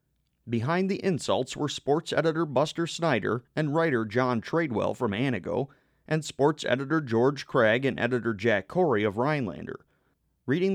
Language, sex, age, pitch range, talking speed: English, male, 30-49, 110-155 Hz, 145 wpm